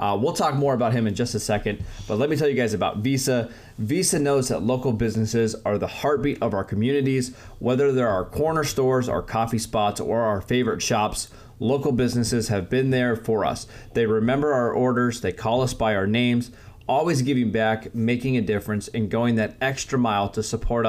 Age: 30-49